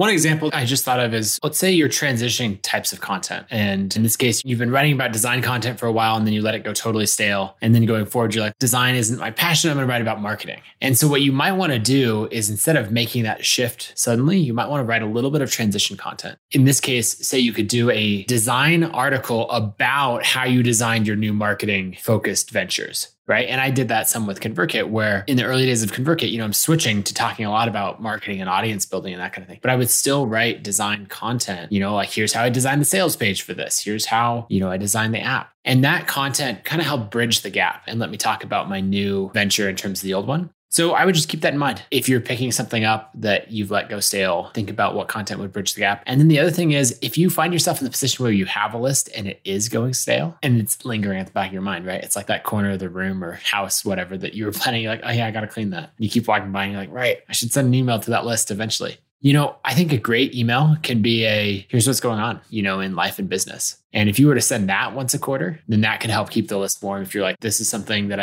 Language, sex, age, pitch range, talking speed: English, male, 20-39, 105-130 Hz, 285 wpm